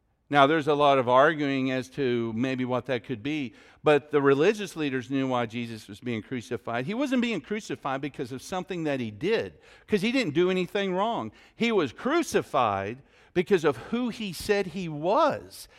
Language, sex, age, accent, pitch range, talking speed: English, male, 50-69, American, 125-200 Hz, 185 wpm